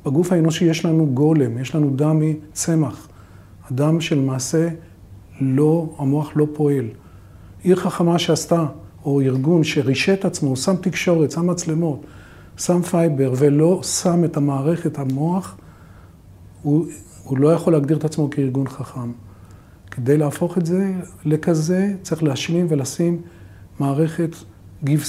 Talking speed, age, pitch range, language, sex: 125 wpm, 40-59, 130-160 Hz, Hebrew, male